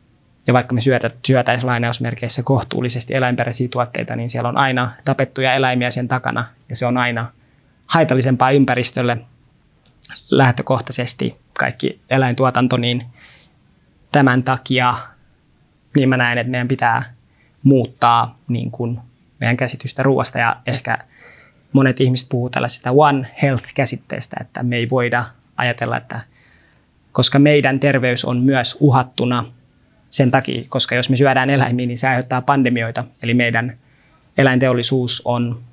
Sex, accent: male, native